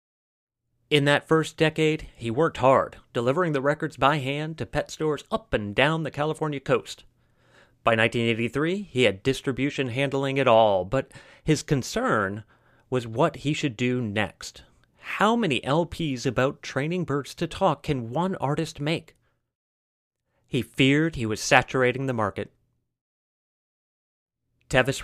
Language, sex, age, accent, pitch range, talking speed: English, male, 30-49, American, 115-150 Hz, 140 wpm